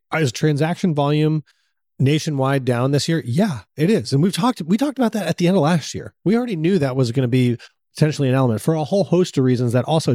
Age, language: 30-49, English